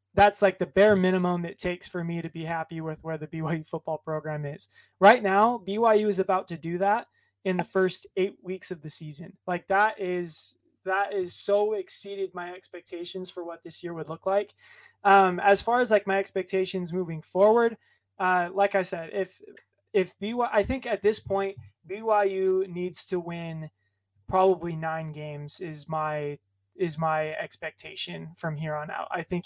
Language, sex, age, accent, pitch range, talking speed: English, male, 20-39, American, 160-190 Hz, 185 wpm